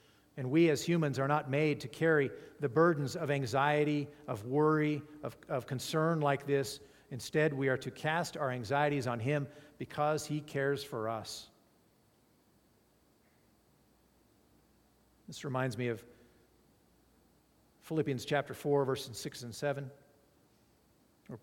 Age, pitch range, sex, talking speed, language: 50-69, 125-150 Hz, male, 130 wpm, English